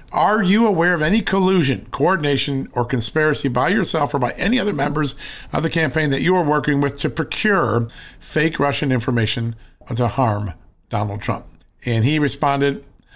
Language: English